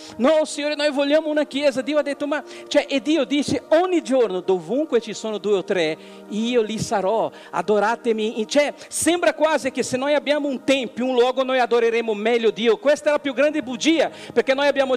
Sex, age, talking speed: male, 50-69, 205 wpm